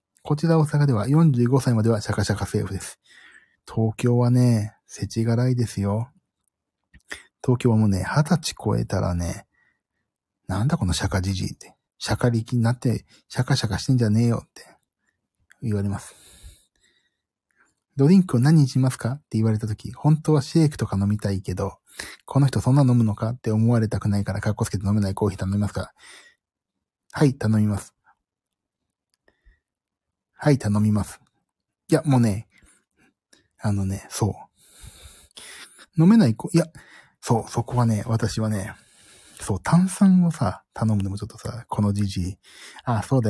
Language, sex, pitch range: Japanese, male, 105-135 Hz